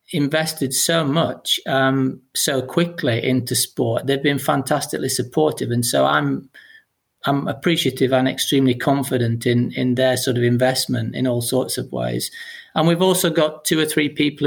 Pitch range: 125-150 Hz